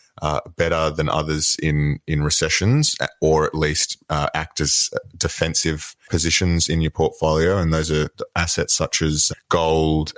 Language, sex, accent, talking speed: English, male, Australian, 145 wpm